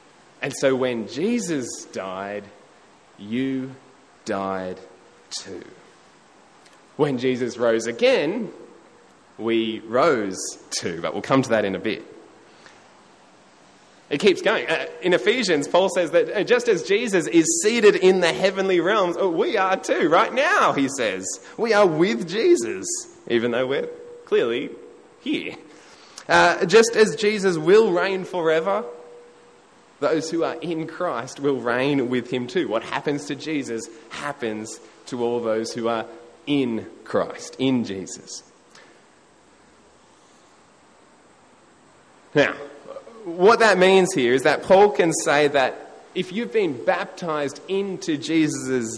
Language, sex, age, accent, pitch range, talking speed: English, male, 20-39, Australian, 125-205 Hz, 125 wpm